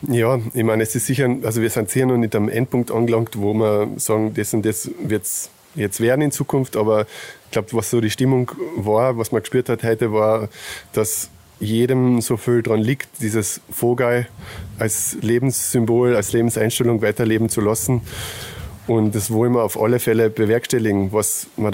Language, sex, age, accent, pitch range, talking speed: German, male, 20-39, German, 110-120 Hz, 180 wpm